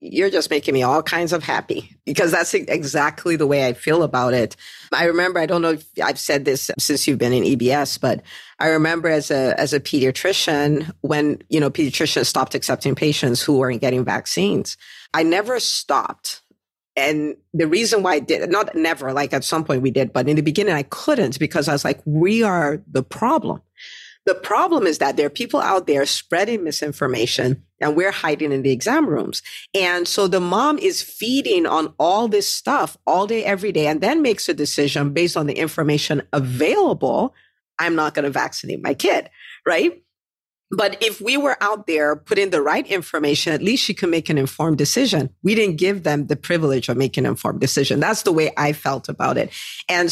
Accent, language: American, English